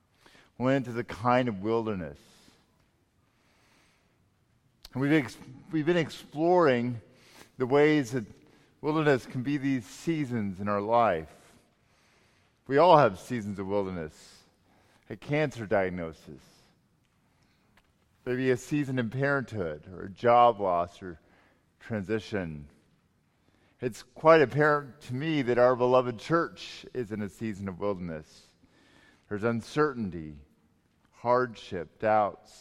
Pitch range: 100-140 Hz